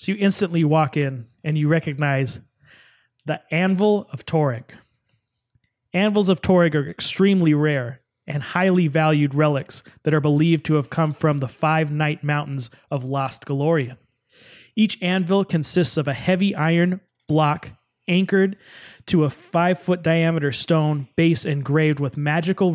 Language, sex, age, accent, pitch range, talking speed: English, male, 20-39, American, 140-170 Hz, 145 wpm